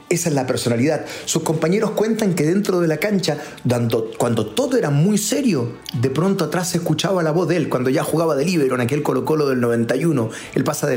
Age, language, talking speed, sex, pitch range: 30-49, Spanish, 215 wpm, male, 125-170 Hz